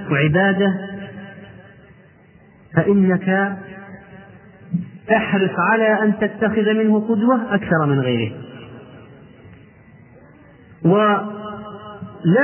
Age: 40-59